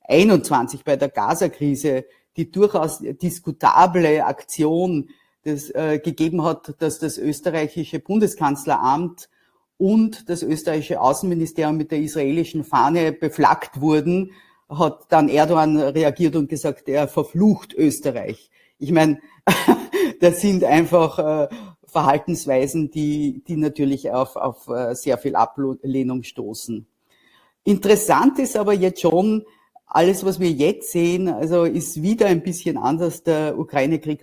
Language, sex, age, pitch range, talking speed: German, female, 50-69, 150-170 Hz, 125 wpm